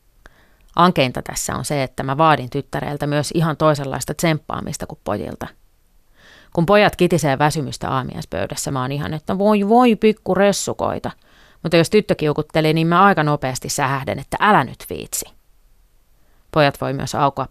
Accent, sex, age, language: native, female, 30-49, Finnish